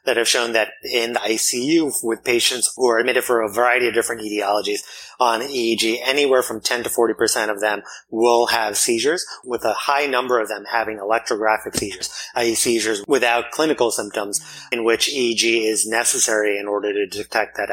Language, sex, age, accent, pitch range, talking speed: English, male, 30-49, American, 110-135 Hz, 185 wpm